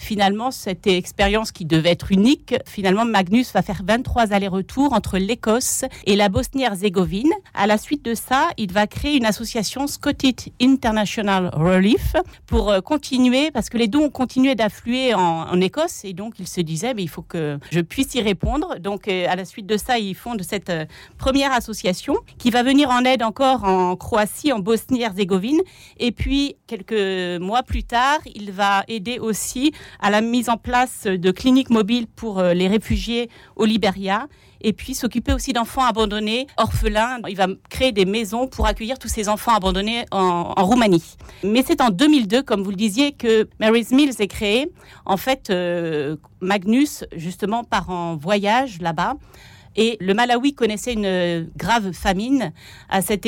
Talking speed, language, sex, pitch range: 170 wpm, French, female, 190-240 Hz